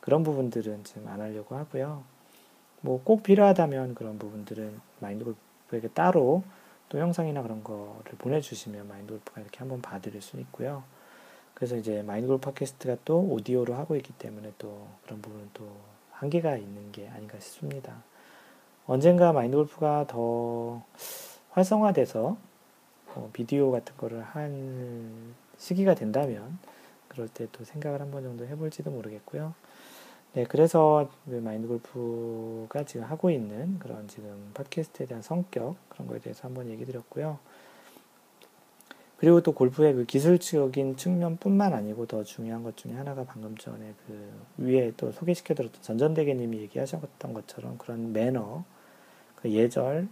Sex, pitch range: male, 110-150 Hz